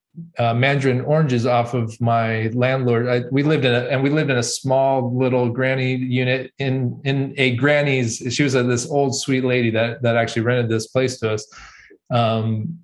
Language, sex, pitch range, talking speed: English, male, 115-135 Hz, 180 wpm